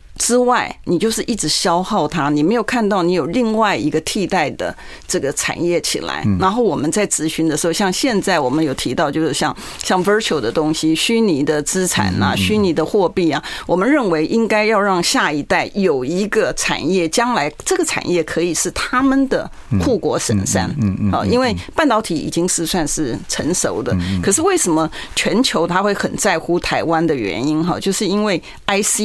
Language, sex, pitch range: Chinese, female, 165-215 Hz